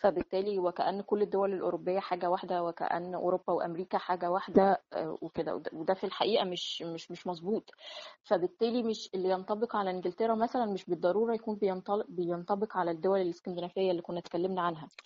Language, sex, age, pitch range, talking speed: Arabic, female, 20-39, 180-220 Hz, 150 wpm